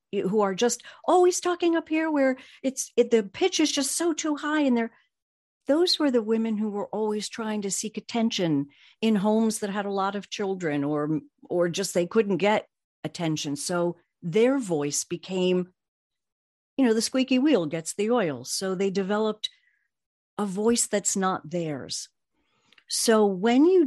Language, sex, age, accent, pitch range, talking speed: English, female, 50-69, American, 165-230 Hz, 170 wpm